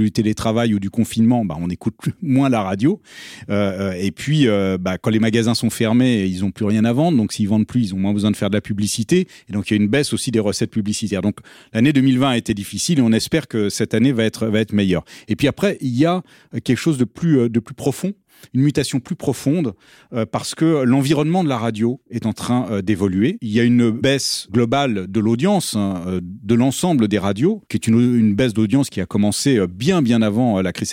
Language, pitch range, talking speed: French, 105-135 Hz, 245 wpm